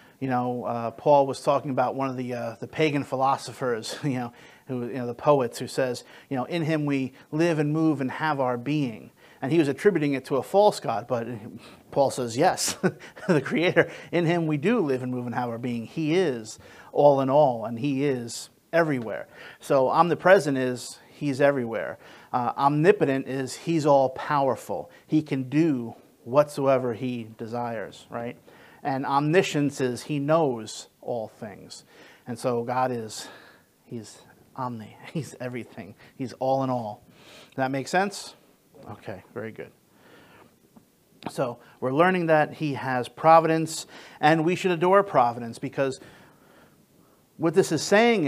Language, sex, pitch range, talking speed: English, male, 125-155 Hz, 160 wpm